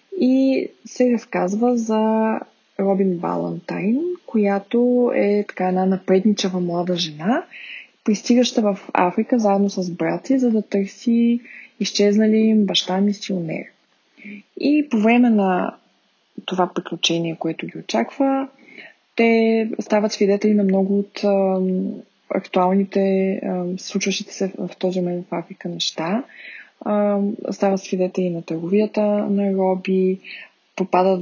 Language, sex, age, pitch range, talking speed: Bulgarian, female, 20-39, 185-220 Hz, 115 wpm